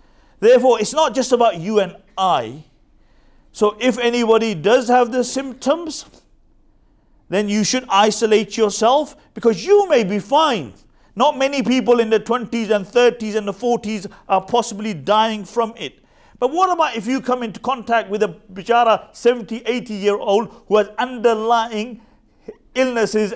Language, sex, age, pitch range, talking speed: English, male, 50-69, 185-230 Hz, 155 wpm